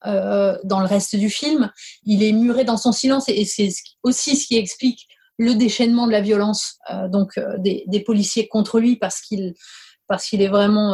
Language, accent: English, French